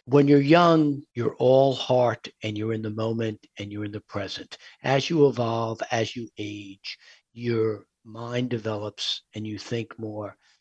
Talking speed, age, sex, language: 165 wpm, 60-79, male, English